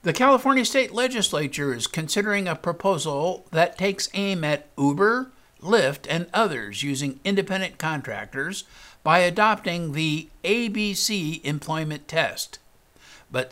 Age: 60-79